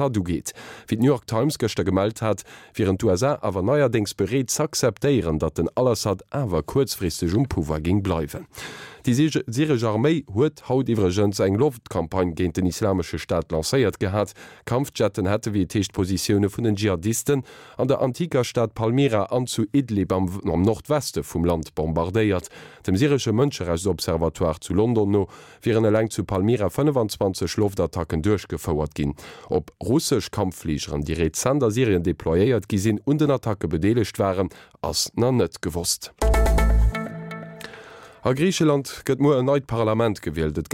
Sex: male